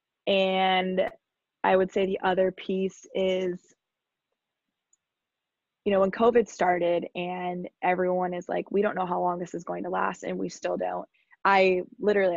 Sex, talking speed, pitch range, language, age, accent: female, 160 wpm, 180-205 Hz, English, 20-39, American